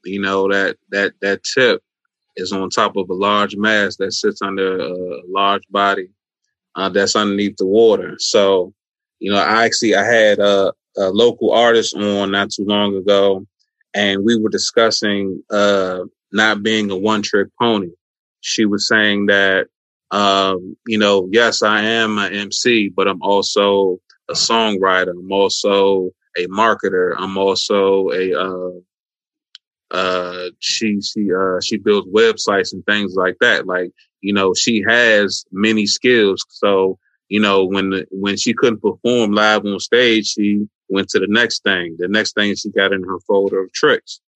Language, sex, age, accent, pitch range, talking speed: English, male, 20-39, American, 95-110 Hz, 165 wpm